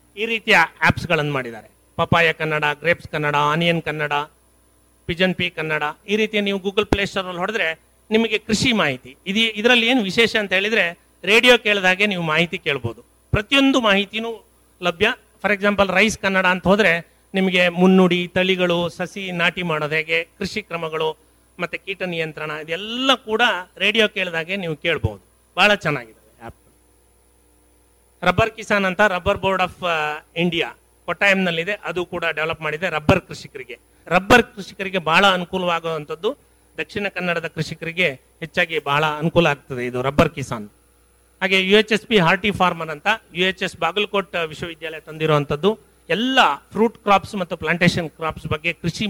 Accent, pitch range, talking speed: native, 155-200 Hz, 135 wpm